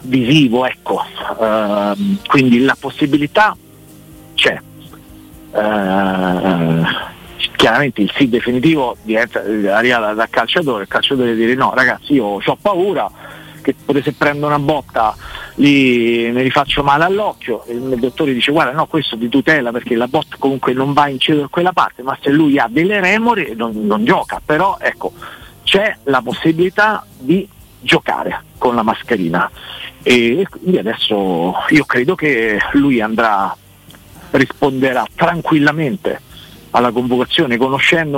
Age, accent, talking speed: 50-69, native, 140 wpm